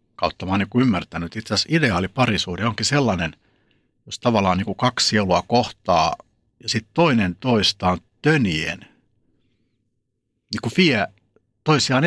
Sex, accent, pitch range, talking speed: male, native, 90-120 Hz, 125 wpm